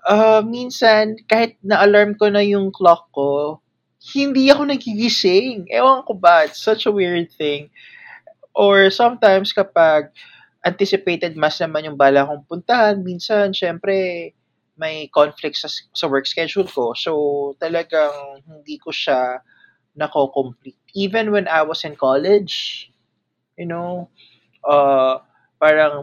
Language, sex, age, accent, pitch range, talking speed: Filipino, male, 20-39, native, 145-205 Hz, 125 wpm